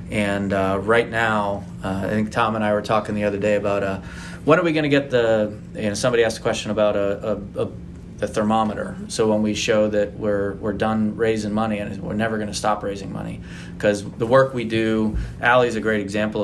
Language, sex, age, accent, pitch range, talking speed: English, male, 30-49, American, 100-110 Hz, 235 wpm